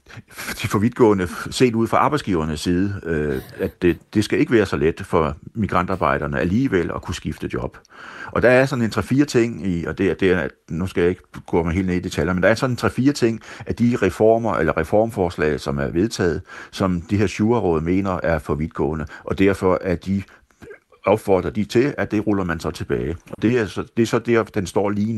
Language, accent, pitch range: Danish, native, 80-105 Hz